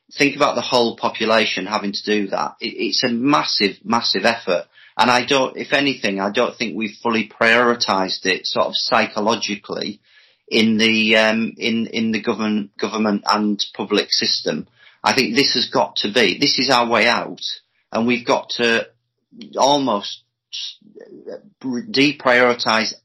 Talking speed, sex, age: 150 wpm, male, 30-49